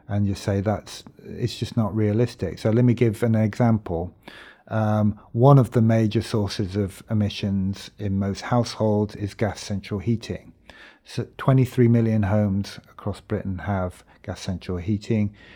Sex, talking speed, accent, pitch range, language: male, 150 wpm, British, 100-120 Hz, English